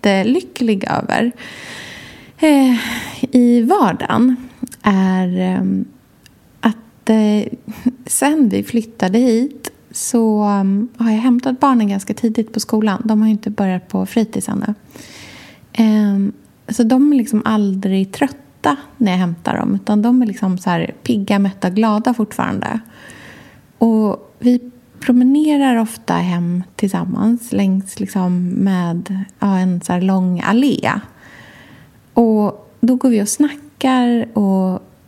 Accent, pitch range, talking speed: native, 200-240 Hz, 115 wpm